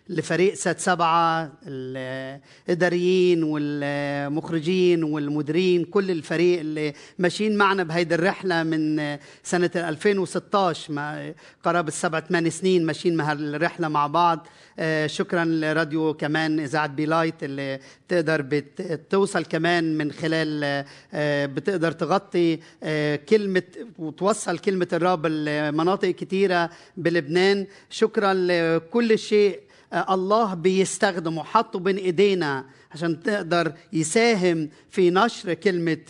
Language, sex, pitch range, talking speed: Arabic, male, 155-190 Hz, 100 wpm